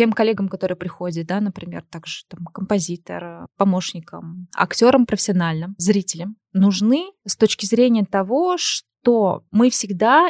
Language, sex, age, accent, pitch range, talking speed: Russian, female, 20-39, native, 190-240 Hz, 130 wpm